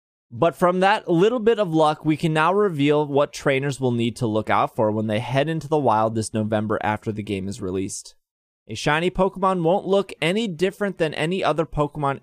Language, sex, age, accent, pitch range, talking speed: English, male, 20-39, American, 115-165 Hz, 210 wpm